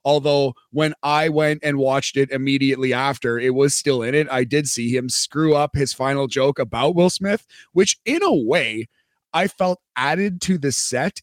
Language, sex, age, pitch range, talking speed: English, male, 30-49, 135-175 Hz, 190 wpm